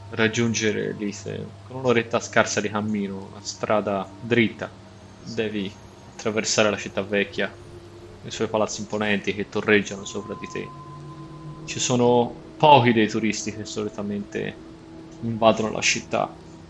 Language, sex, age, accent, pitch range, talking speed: Italian, male, 20-39, native, 105-120 Hz, 120 wpm